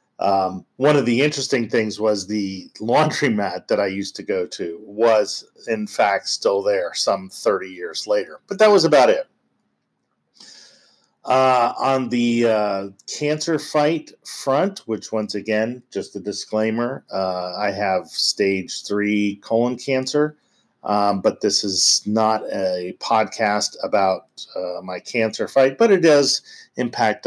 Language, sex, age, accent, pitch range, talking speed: English, male, 40-59, American, 100-130 Hz, 145 wpm